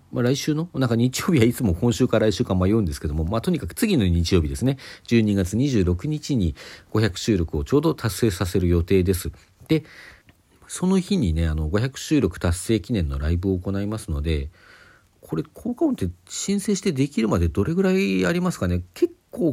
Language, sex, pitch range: Japanese, male, 90-130 Hz